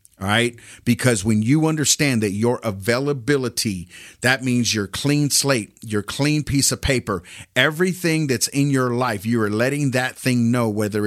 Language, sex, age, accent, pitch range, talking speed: English, male, 40-59, American, 105-150 Hz, 170 wpm